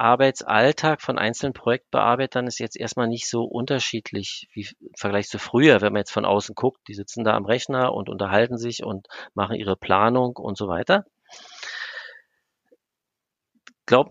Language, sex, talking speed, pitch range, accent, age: German, male, 160 wpm, 115-150 Hz, German, 40-59